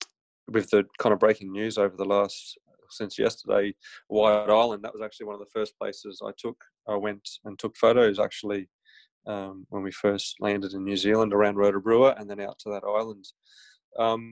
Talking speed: 195 wpm